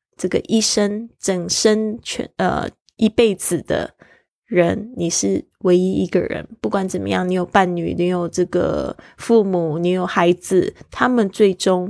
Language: Chinese